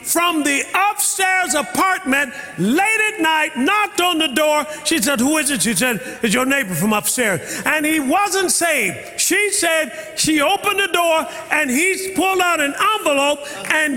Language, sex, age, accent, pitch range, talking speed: English, male, 40-59, American, 295-370 Hz, 170 wpm